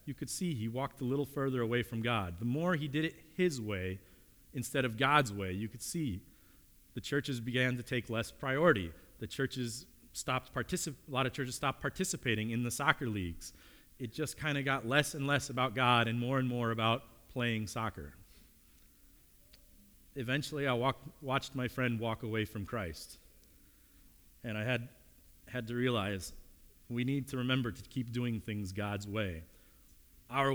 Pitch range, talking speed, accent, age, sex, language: 85-125 Hz, 175 wpm, American, 40-59, male, English